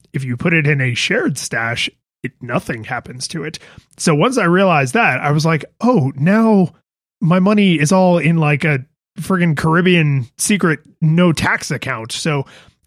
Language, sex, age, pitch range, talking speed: English, male, 20-39, 135-175 Hz, 175 wpm